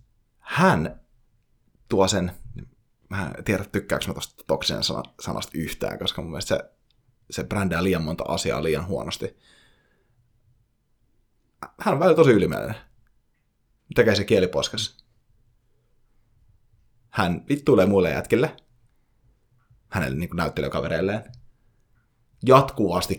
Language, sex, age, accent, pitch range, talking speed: Finnish, male, 30-49, native, 100-120 Hz, 105 wpm